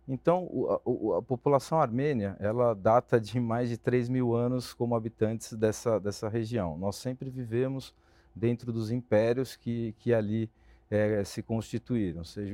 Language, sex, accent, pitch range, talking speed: Portuguese, male, Brazilian, 105-125 Hz, 155 wpm